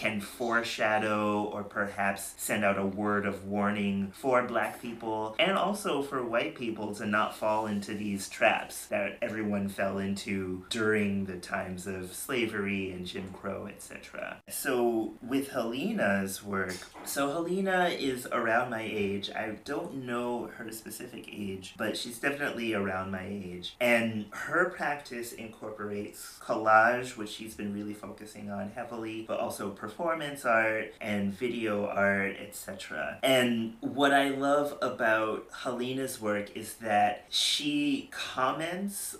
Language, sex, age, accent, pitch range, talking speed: English, male, 30-49, American, 100-125 Hz, 140 wpm